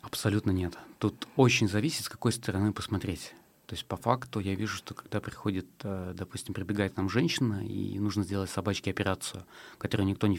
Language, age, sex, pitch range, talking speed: Russian, 30-49, male, 95-110 Hz, 175 wpm